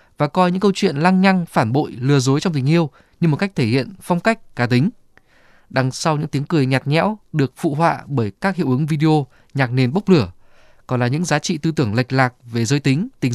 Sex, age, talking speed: male, 20-39, 245 wpm